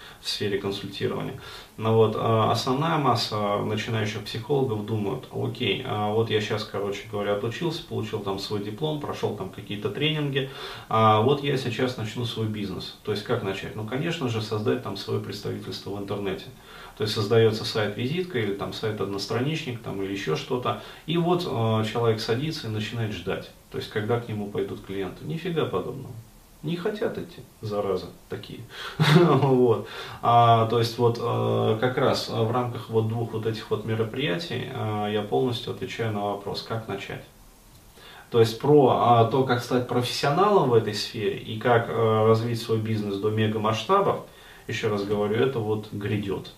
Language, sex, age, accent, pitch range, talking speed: Russian, male, 30-49, native, 105-125 Hz, 155 wpm